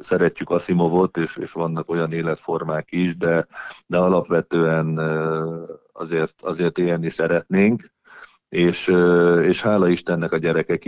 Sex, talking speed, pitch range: male, 120 wpm, 85-95 Hz